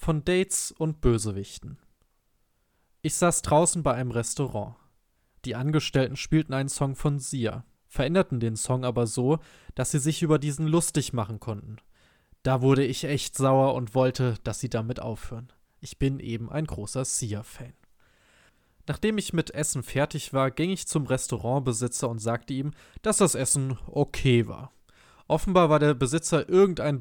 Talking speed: 155 wpm